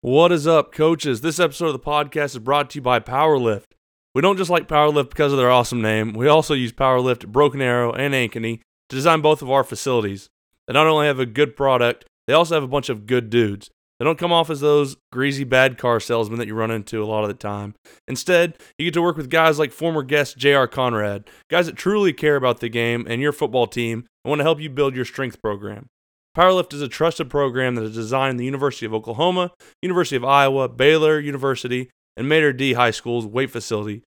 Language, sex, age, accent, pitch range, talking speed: English, male, 20-39, American, 120-155 Hz, 225 wpm